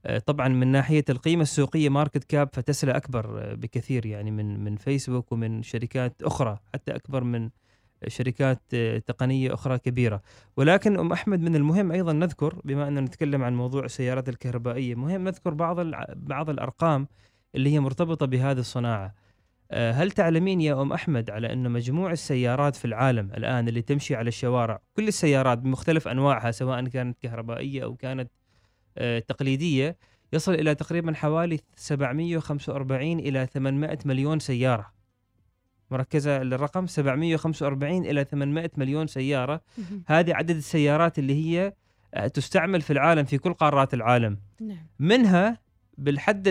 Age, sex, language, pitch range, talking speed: 20-39, male, Arabic, 125-160 Hz, 135 wpm